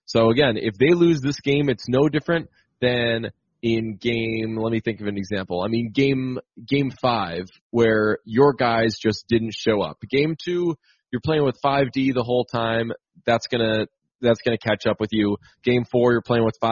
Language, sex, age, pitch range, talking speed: English, male, 20-39, 110-135 Hz, 190 wpm